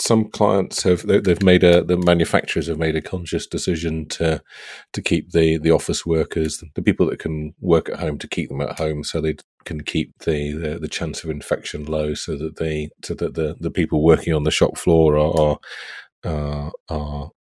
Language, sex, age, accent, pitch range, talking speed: English, male, 40-59, British, 75-90 Hz, 215 wpm